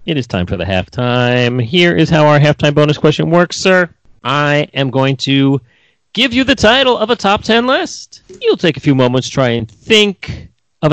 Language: English